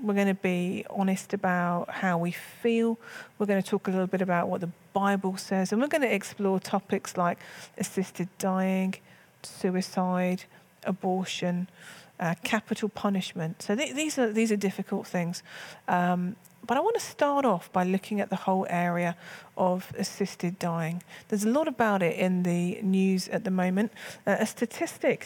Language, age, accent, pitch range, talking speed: English, 40-59, British, 180-210 Hz, 175 wpm